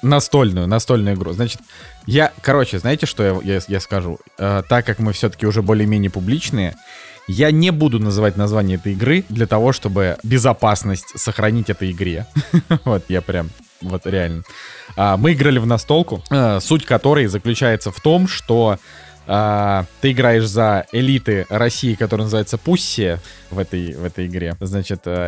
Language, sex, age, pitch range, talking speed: Russian, male, 20-39, 100-125 Hz, 150 wpm